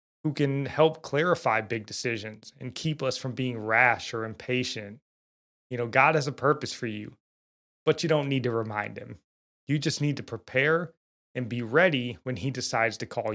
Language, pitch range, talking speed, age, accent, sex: English, 110-135 Hz, 190 wpm, 20-39, American, male